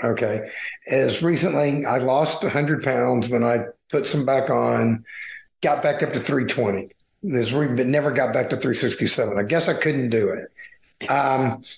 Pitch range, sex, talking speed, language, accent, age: 125-155 Hz, male, 160 wpm, English, American, 50-69